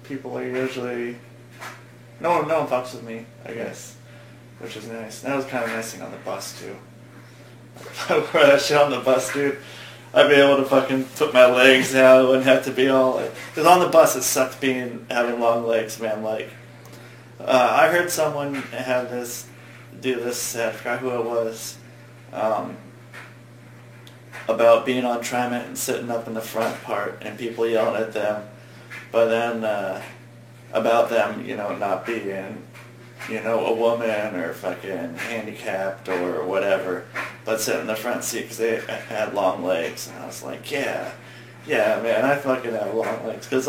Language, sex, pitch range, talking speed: English, male, 115-130 Hz, 185 wpm